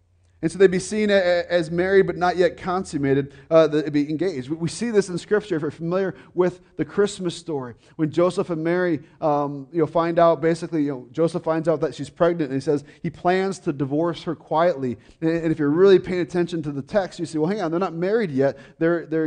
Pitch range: 145-175 Hz